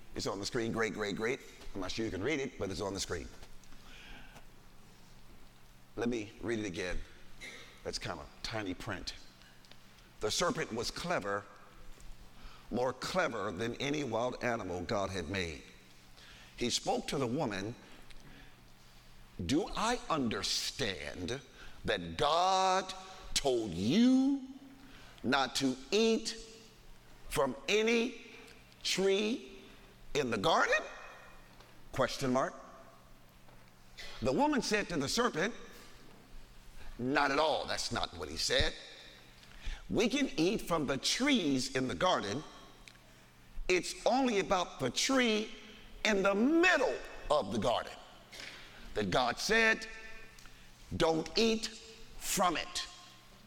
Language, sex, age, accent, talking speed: English, male, 50-69, American, 120 wpm